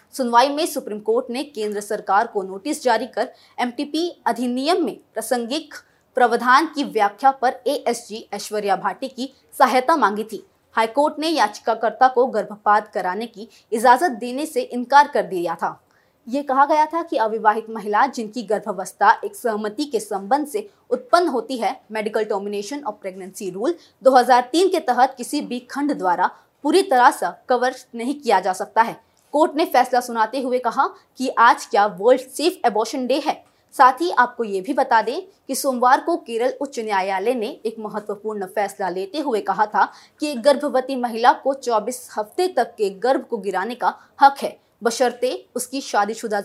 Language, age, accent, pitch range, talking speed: Hindi, 20-39, native, 215-280 Hz, 165 wpm